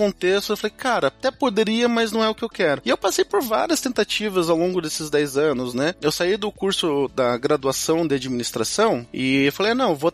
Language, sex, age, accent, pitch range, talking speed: Portuguese, male, 20-39, Brazilian, 165-240 Hz, 220 wpm